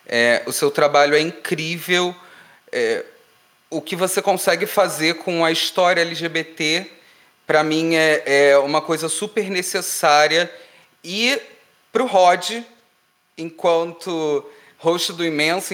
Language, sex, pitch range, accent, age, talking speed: Portuguese, male, 150-185 Hz, Brazilian, 30-49, 120 wpm